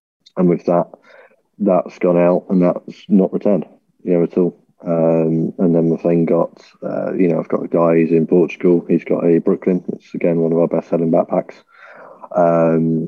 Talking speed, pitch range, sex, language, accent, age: 190 wpm, 85-90 Hz, male, English, British, 30-49